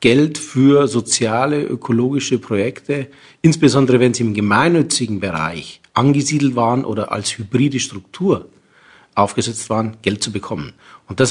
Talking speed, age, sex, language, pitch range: 125 wpm, 40-59, male, German, 110-140 Hz